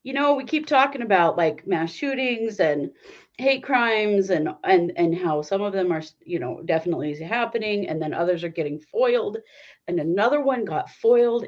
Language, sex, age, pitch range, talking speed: English, female, 40-59, 170-230 Hz, 185 wpm